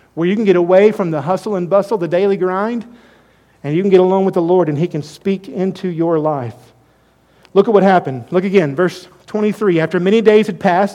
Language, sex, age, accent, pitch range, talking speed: English, male, 50-69, American, 155-210 Hz, 225 wpm